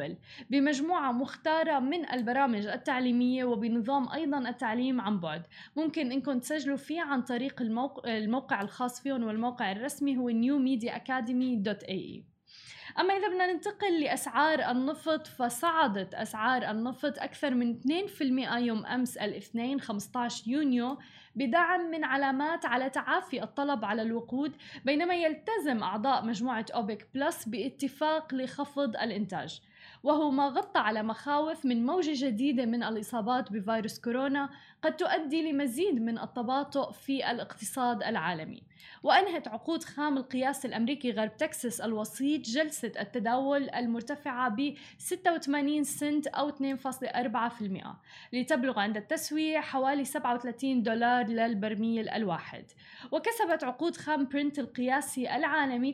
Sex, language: female, Arabic